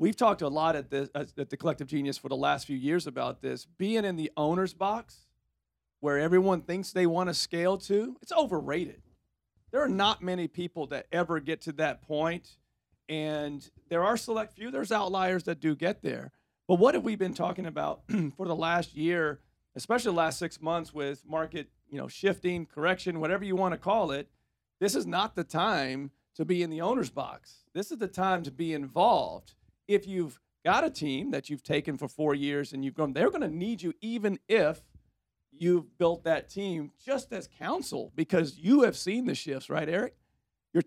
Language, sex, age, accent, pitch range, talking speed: English, male, 40-59, American, 150-190 Hz, 195 wpm